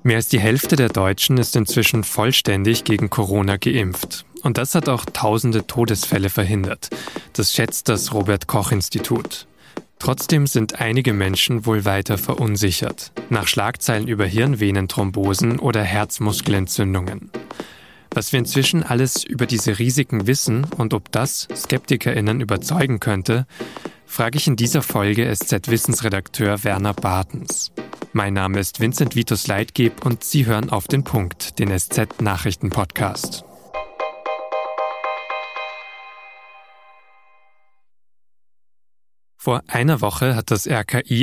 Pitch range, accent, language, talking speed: 100-125 Hz, German, German, 110 wpm